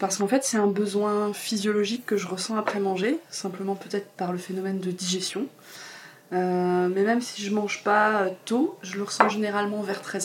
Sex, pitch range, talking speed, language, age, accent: female, 180-210 Hz, 195 wpm, French, 20-39, French